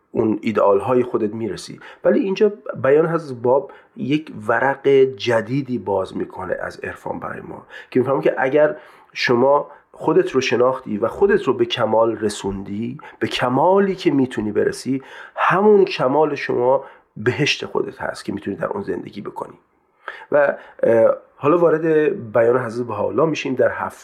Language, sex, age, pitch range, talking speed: Persian, male, 40-59, 115-170 Hz, 145 wpm